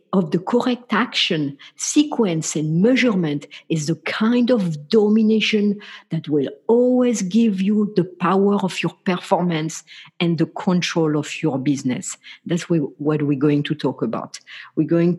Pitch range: 165-220 Hz